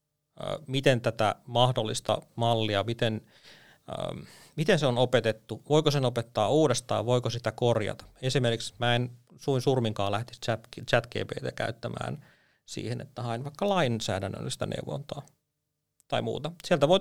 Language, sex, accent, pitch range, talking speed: Finnish, male, native, 110-140 Hz, 125 wpm